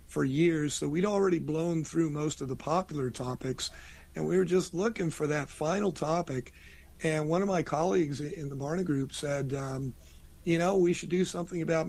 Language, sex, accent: English, male, American